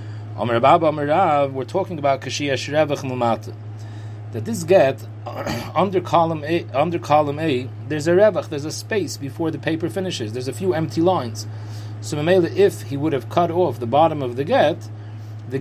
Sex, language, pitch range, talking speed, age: male, English, 110-155 Hz, 160 wpm, 40-59